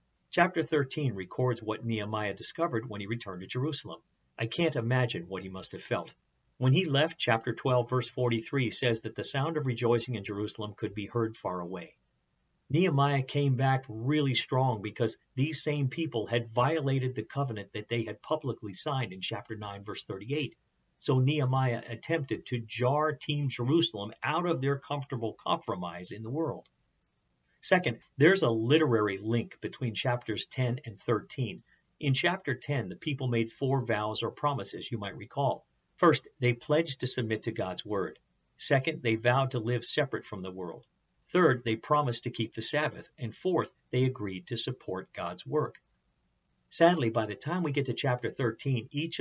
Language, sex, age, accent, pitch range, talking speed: English, male, 50-69, American, 110-140 Hz, 175 wpm